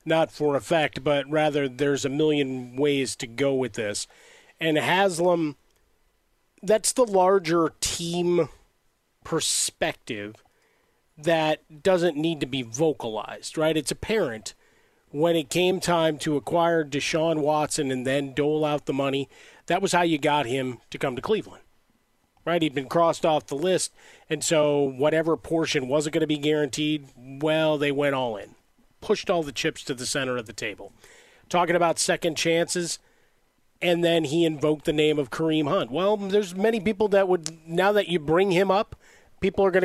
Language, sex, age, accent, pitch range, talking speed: English, male, 40-59, American, 145-170 Hz, 170 wpm